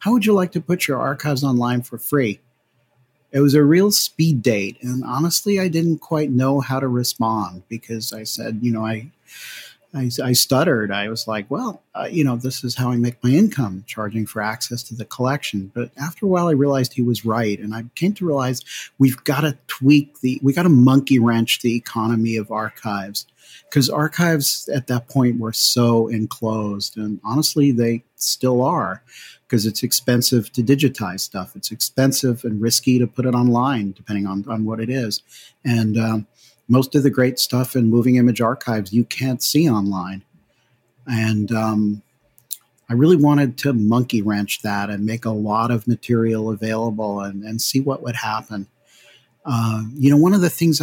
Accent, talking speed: American, 190 wpm